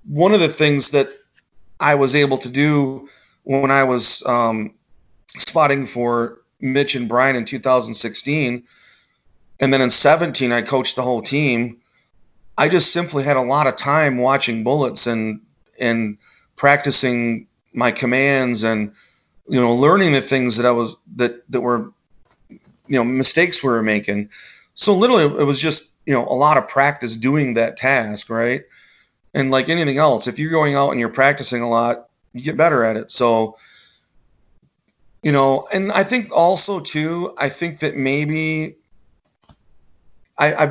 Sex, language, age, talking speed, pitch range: male, English, 30-49, 160 wpm, 120-145 Hz